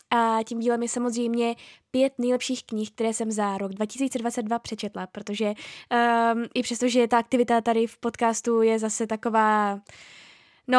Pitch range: 215-245 Hz